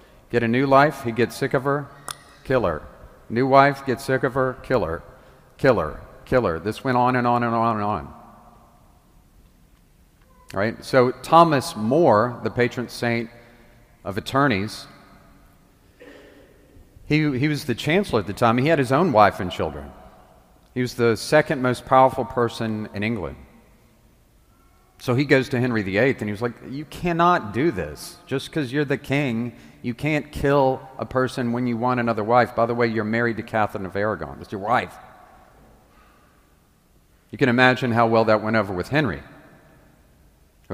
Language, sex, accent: English, male, American